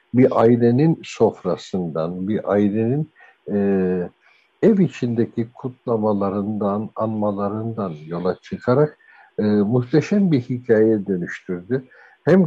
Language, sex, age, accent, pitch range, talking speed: Turkish, male, 60-79, native, 100-130 Hz, 85 wpm